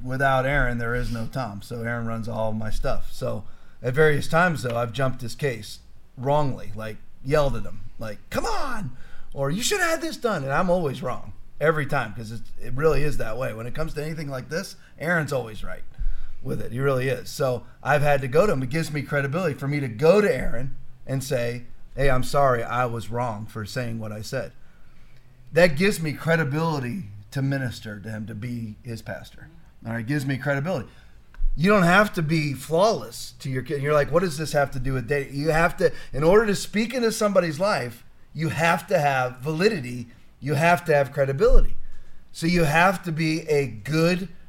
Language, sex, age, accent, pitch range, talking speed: English, male, 40-59, American, 120-160 Hz, 210 wpm